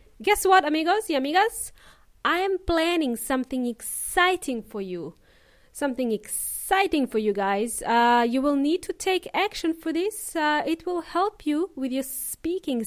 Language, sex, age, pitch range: English, female, 20-39, 255-360 Hz